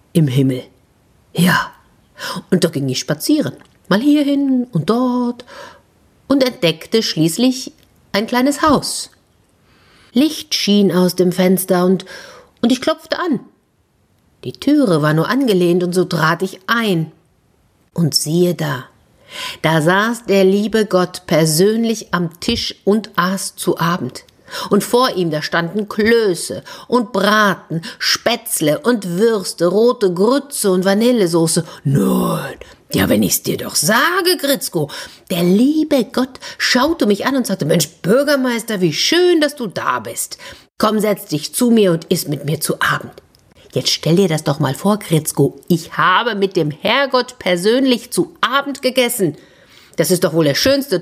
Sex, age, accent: female, 50-69, German